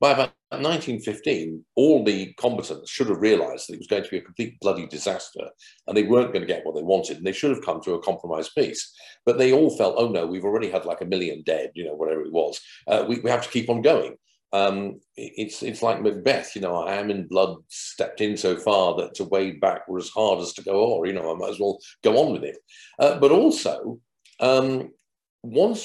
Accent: British